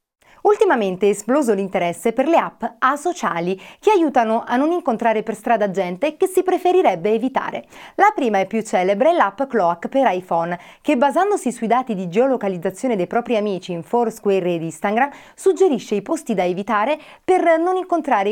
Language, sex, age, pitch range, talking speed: Italian, female, 30-49, 195-290 Hz, 165 wpm